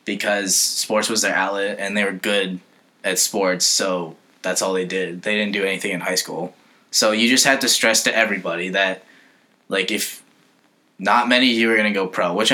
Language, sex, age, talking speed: English, male, 10-29, 205 wpm